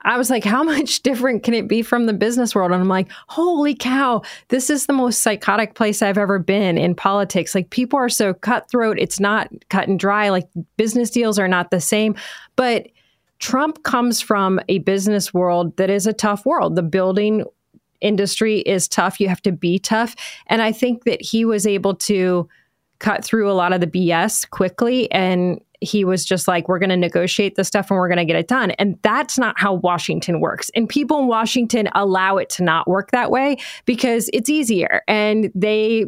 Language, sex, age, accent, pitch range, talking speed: English, female, 20-39, American, 190-240 Hz, 205 wpm